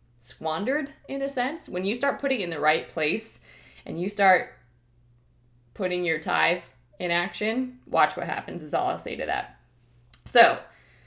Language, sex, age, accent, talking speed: English, female, 20-39, American, 165 wpm